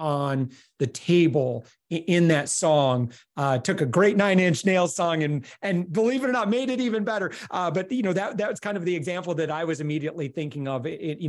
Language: English